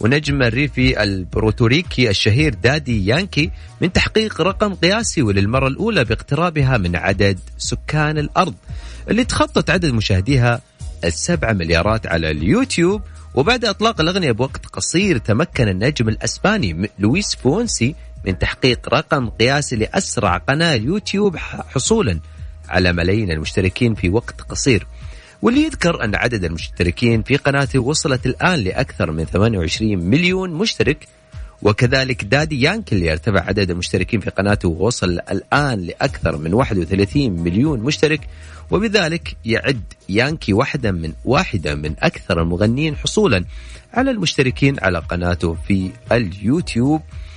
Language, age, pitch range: Arabic, 40-59, 90-155 Hz